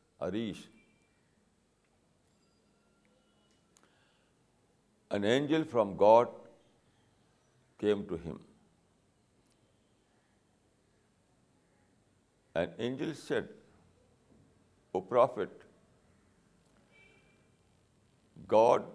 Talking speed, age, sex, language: 45 wpm, 60-79, male, Urdu